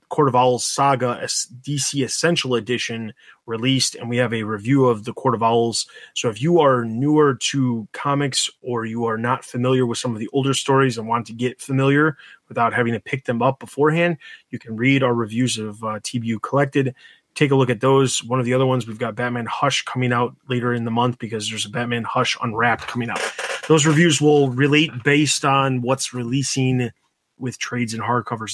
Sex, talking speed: male, 205 wpm